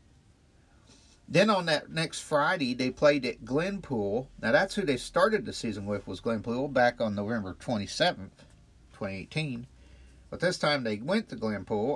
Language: English